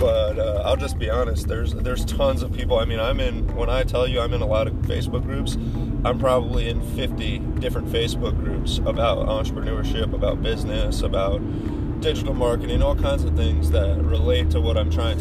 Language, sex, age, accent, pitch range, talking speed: English, male, 30-49, American, 80-100 Hz, 195 wpm